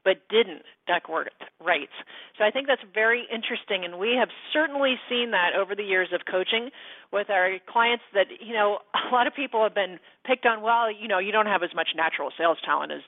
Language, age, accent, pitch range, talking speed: English, 40-59, American, 190-250 Hz, 215 wpm